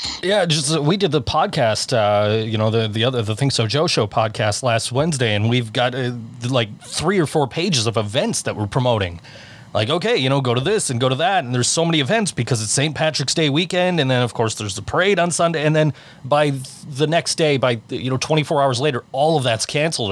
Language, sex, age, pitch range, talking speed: English, male, 30-49, 115-145 Hz, 250 wpm